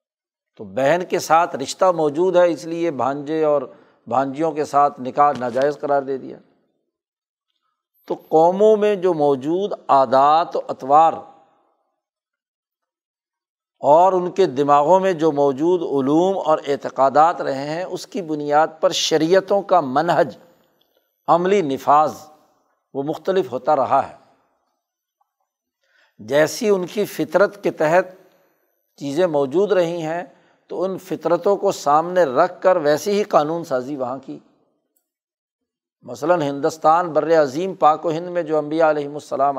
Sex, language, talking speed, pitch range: male, Urdu, 135 wpm, 145-190 Hz